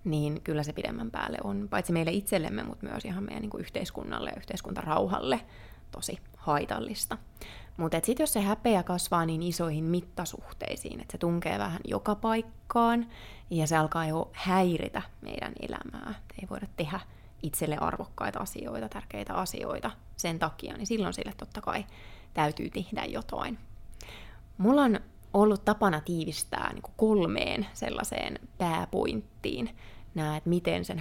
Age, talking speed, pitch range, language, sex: 20-39, 135 wpm, 160-205 Hz, Finnish, female